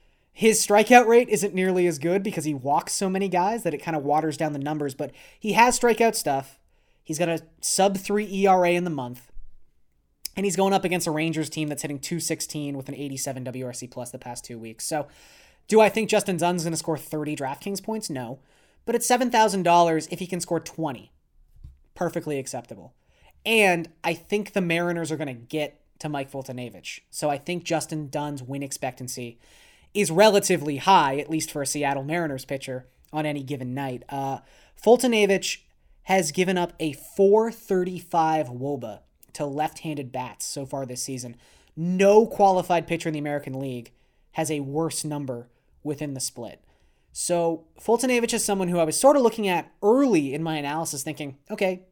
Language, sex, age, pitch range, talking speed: English, male, 20-39, 135-185 Hz, 180 wpm